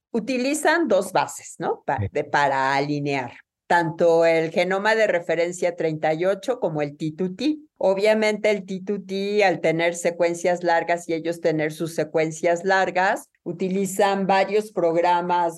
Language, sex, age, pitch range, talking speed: Spanish, female, 50-69, 155-185 Hz, 125 wpm